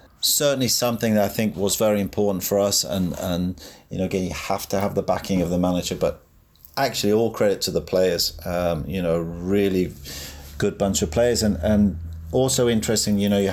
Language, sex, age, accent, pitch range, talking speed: English, male, 40-59, British, 95-105 Hz, 205 wpm